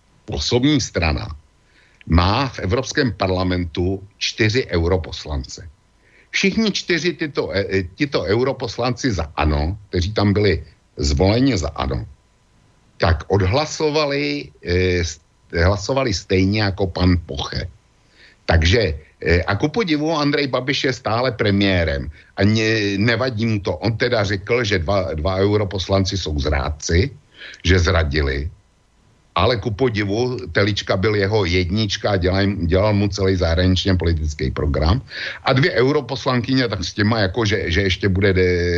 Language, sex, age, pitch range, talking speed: Slovak, male, 60-79, 85-115 Hz, 125 wpm